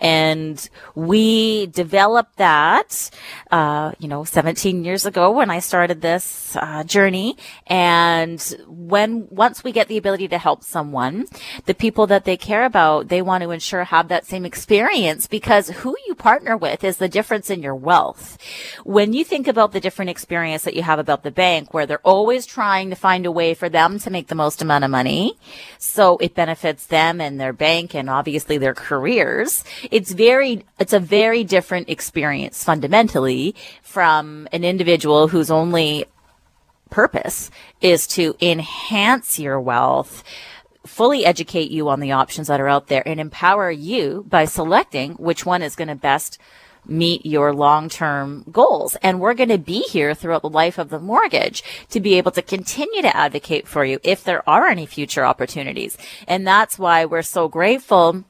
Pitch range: 155-200 Hz